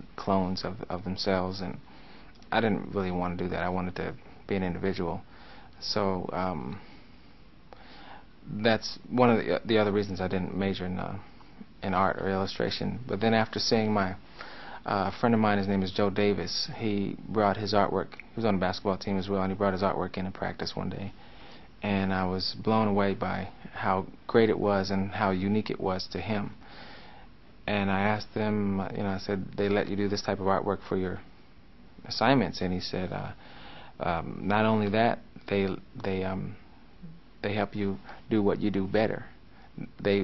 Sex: male